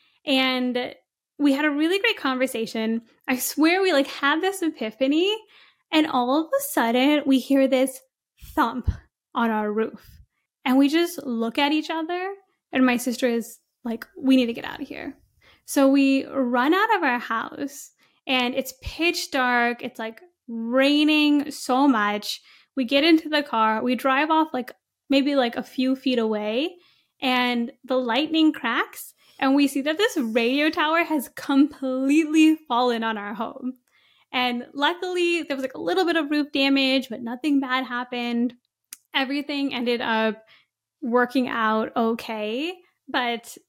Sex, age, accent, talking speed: female, 10-29, American, 160 wpm